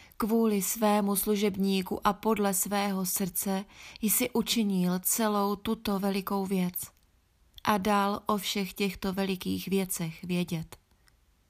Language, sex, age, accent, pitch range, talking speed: Czech, female, 20-39, native, 185-215 Hz, 110 wpm